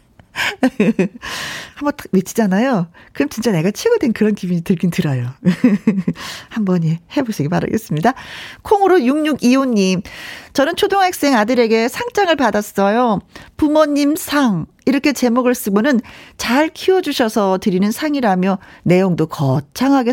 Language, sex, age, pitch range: Korean, female, 40-59, 180-255 Hz